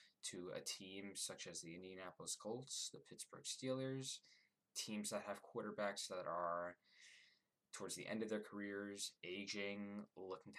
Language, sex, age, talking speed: English, male, 20-39, 145 wpm